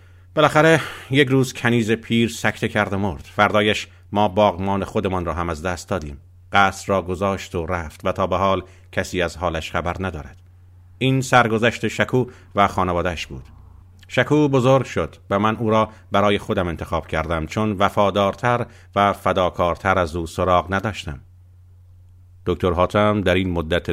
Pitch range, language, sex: 90-105 Hz, Persian, male